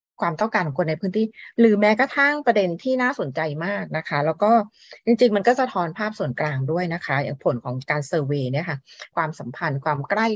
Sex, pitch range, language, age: female, 150-225 Hz, Thai, 30-49